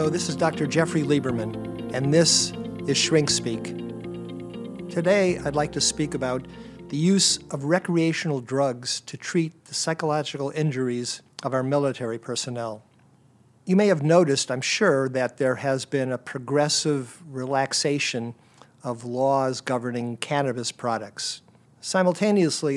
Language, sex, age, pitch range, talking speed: English, male, 50-69, 125-150 Hz, 130 wpm